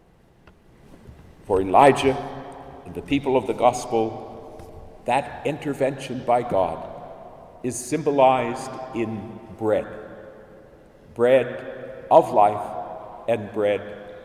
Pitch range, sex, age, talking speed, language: 115-150 Hz, male, 60-79, 90 wpm, English